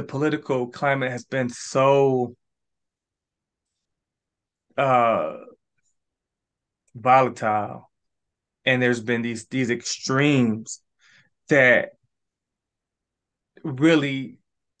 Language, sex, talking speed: English, male, 65 wpm